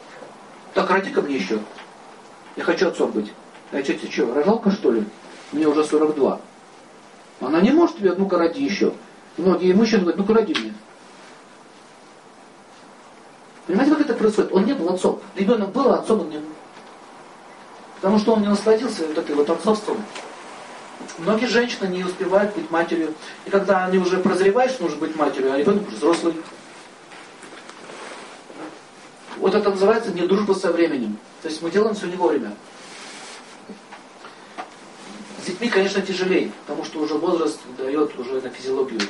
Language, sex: Russian, male